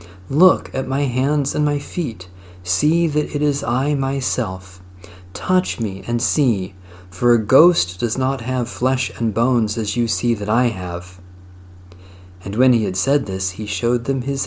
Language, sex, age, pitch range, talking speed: English, male, 40-59, 95-135 Hz, 175 wpm